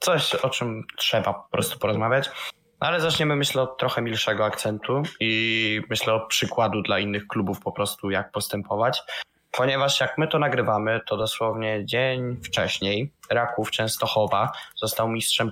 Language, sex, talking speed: Polish, male, 145 wpm